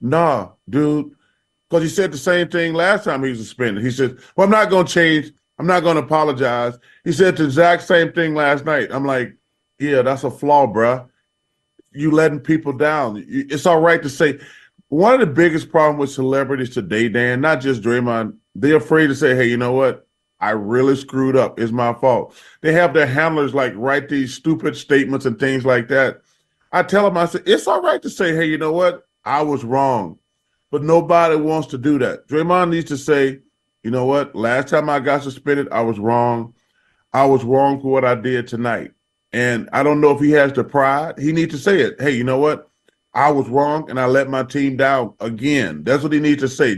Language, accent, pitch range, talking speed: English, American, 130-160 Hz, 220 wpm